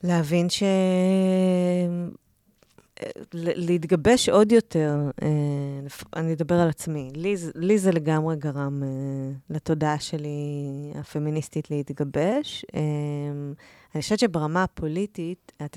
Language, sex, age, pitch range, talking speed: Hebrew, female, 30-49, 150-180 Hz, 85 wpm